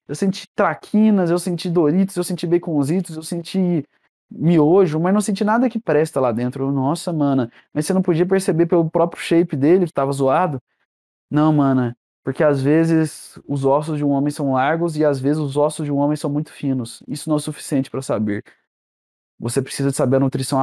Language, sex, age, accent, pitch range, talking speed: Portuguese, male, 20-39, Brazilian, 130-175 Hz, 205 wpm